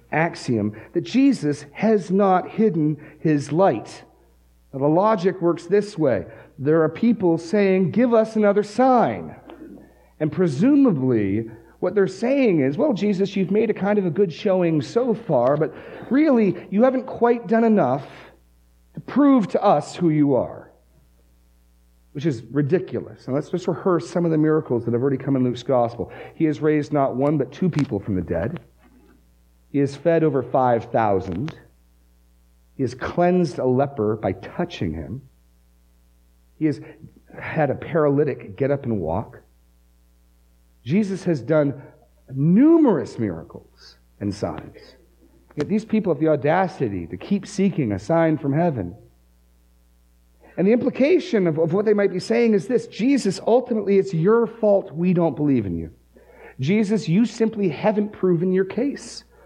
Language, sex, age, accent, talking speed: English, male, 40-59, American, 155 wpm